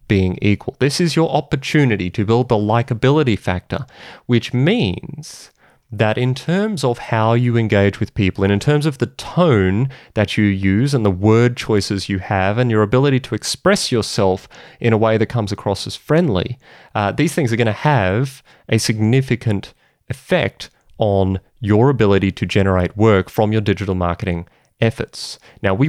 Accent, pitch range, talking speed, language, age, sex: Australian, 100-130 Hz, 170 wpm, English, 30-49, male